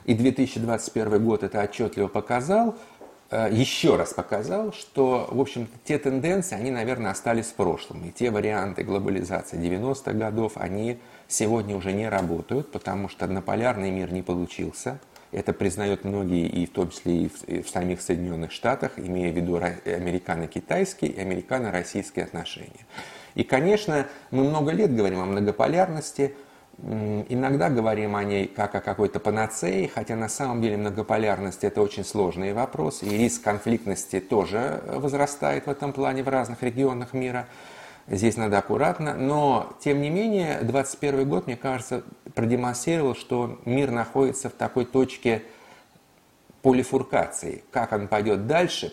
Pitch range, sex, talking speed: 100-135 Hz, male, 145 wpm